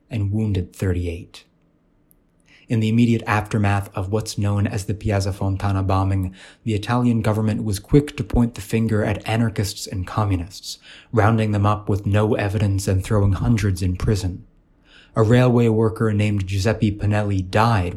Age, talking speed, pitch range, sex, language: 20-39, 155 wpm, 100-115 Hz, male, English